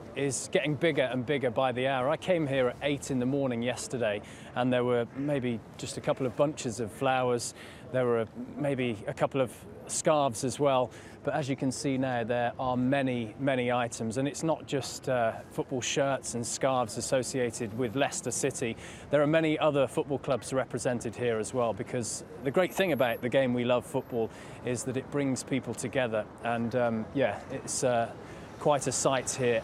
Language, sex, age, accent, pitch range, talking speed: English, male, 20-39, British, 115-135 Hz, 195 wpm